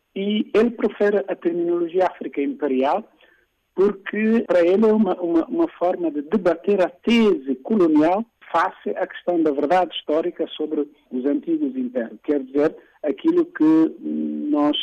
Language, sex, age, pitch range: Portuguese, male, 50-69, 170-280 Hz